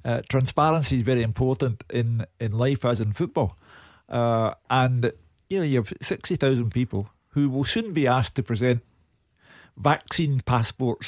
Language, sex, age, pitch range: English, male, 50-69, 110-135 Hz